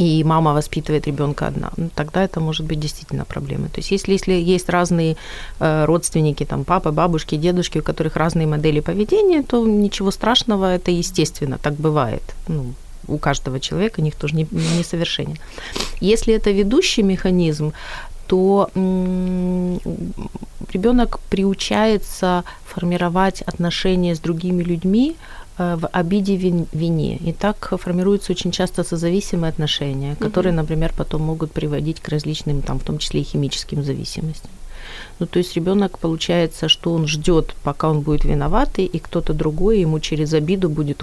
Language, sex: Ukrainian, female